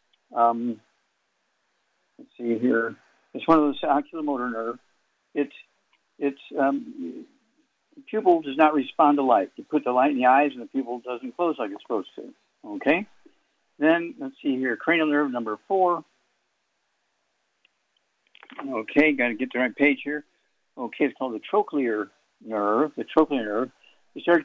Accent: American